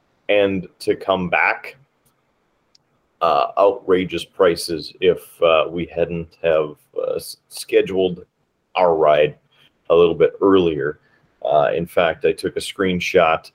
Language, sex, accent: English, male, American